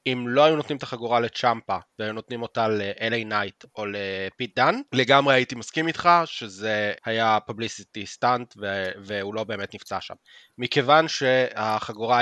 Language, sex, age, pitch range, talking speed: Hebrew, male, 20-39, 110-130 Hz, 145 wpm